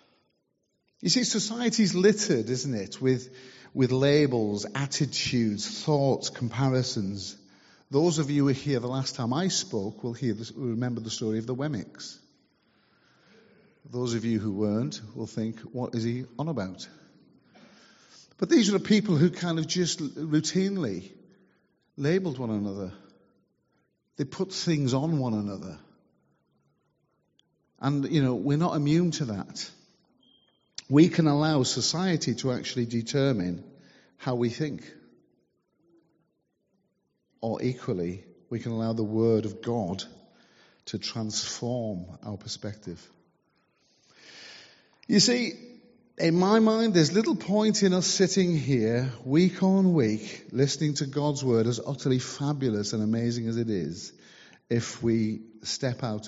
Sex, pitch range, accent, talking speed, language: male, 115-165 Hz, British, 135 wpm, English